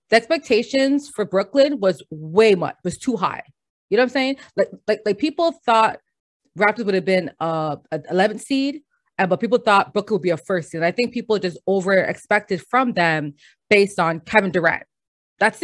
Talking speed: 205 wpm